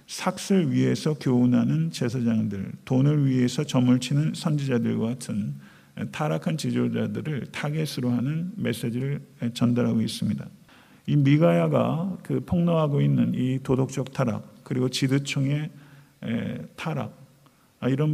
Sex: male